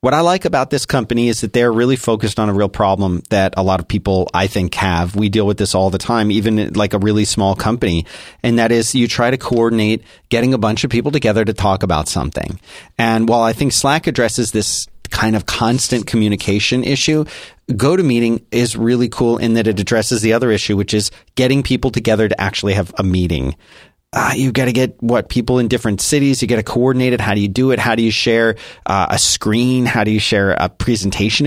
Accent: American